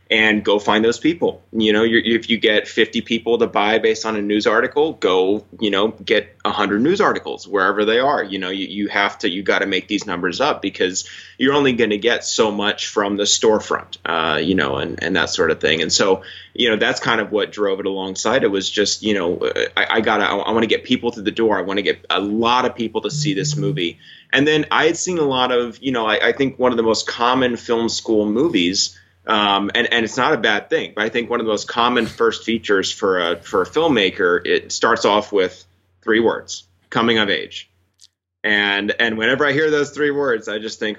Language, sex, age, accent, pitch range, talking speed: English, male, 30-49, American, 100-125 Hz, 240 wpm